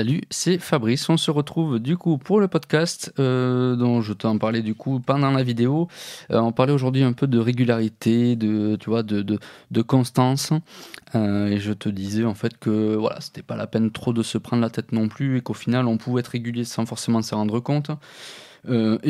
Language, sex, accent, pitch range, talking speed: French, male, French, 115-145 Hz, 220 wpm